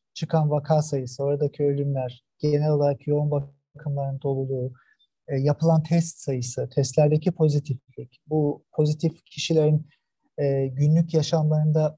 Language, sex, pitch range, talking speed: Turkish, male, 140-175 Hz, 100 wpm